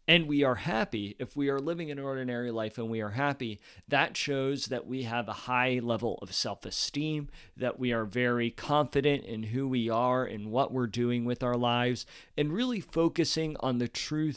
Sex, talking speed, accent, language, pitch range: male, 195 wpm, American, English, 120-145 Hz